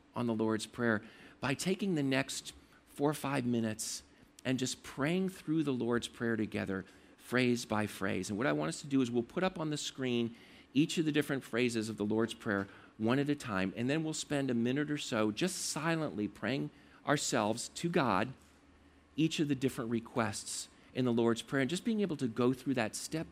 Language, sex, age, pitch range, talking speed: English, male, 50-69, 105-140 Hz, 210 wpm